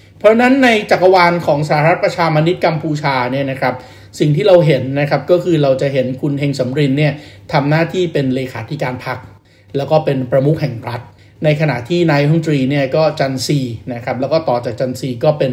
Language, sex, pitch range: Thai, male, 130-165 Hz